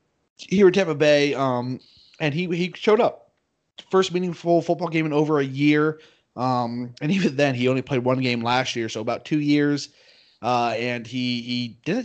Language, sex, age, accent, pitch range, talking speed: English, male, 30-49, American, 120-145 Hz, 190 wpm